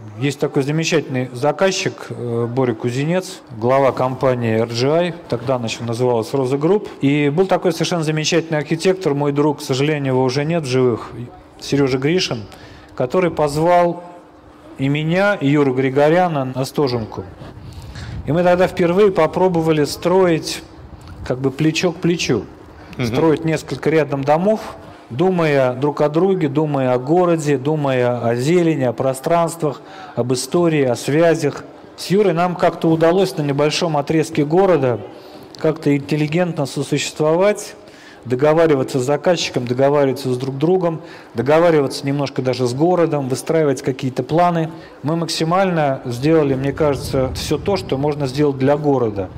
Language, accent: Russian, native